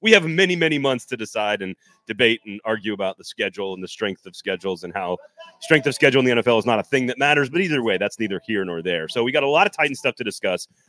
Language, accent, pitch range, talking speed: English, American, 115-165 Hz, 280 wpm